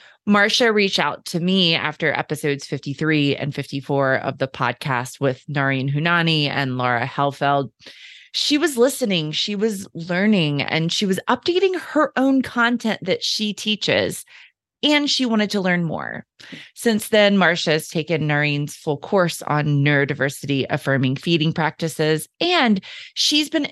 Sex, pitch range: female, 140-205 Hz